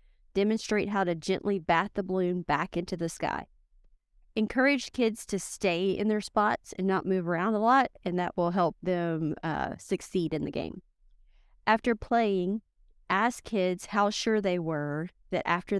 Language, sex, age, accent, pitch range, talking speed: English, female, 30-49, American, 165-210 Hz, 165 wpm